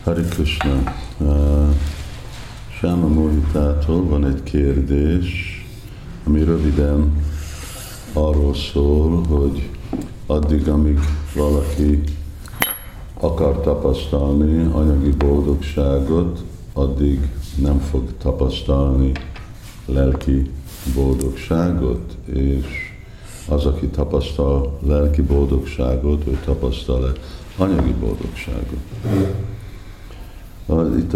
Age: 50-69